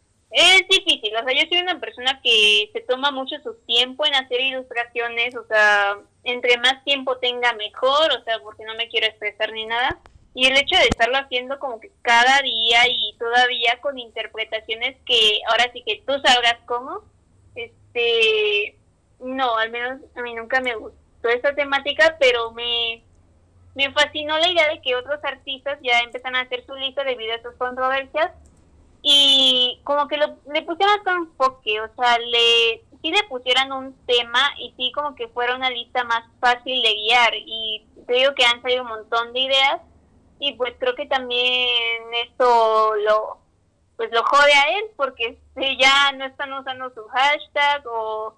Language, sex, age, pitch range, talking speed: Spanish, female, 20-39, 235-285 Hz, 175 wpm